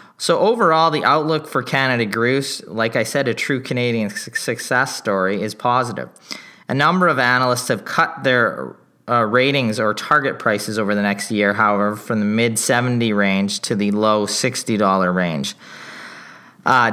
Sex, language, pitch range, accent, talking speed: male, English, 110-130 Hz, American, 155 wpm